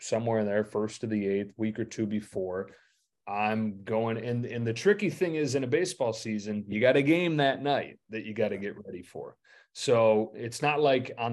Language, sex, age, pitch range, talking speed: English, male, 30-49, 100-120 Hz, 220 wpm